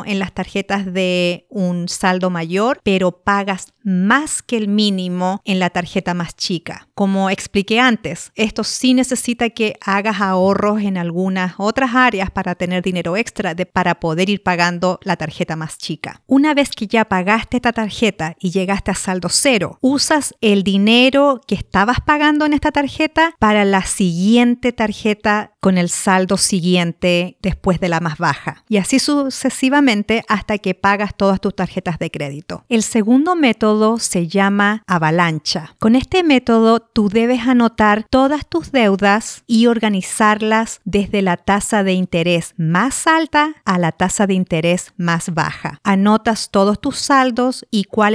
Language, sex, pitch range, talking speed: Spanish, female, 185-230 Hz, 155 wpm